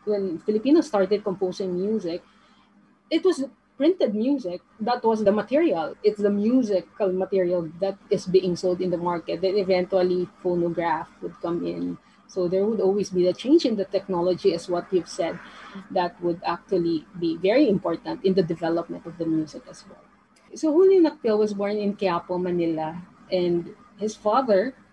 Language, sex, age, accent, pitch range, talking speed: English, female, 20-39, Filipino, 180-220 Hz, 165 wpm